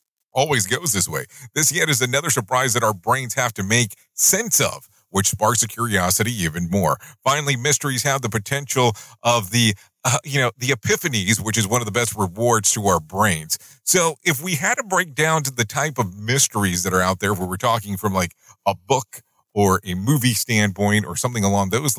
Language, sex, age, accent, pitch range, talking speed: English, male, 40-59, American, 105-130 Hz, 205 wpm